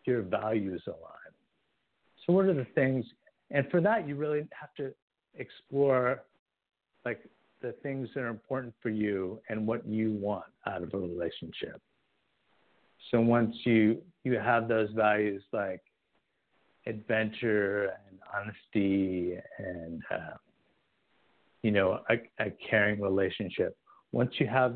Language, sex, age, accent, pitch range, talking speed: English, male, 50-69, American, 105-135 Hz, 130 wpm